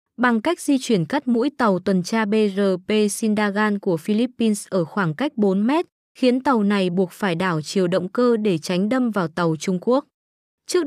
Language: Vietnamese